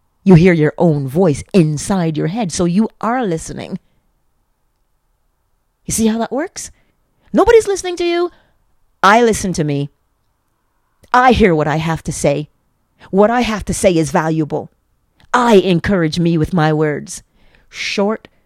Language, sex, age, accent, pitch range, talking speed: English, female, 40-59, American, 160-230 Hz, 150 wpm